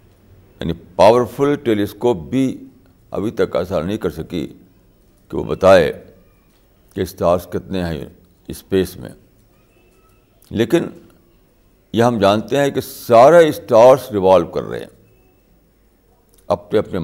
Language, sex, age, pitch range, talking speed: Urdu, male, 60-79, 95-120 Hz, 115 wpm